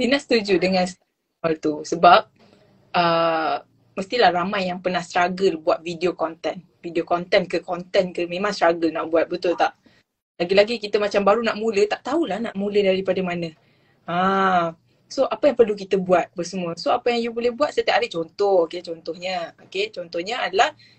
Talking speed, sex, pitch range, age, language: 170 wpm, female, 175-230 Hz, 20-39, Malay